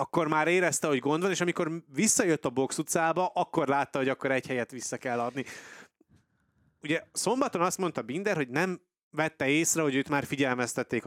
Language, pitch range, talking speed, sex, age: Hungarian, 135-165 Hz, 185 wpm, male, 30-49